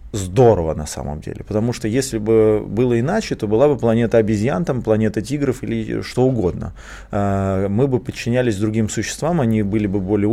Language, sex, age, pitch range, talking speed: Russian, male, 20-39, 105-135 Hz, 175 wpm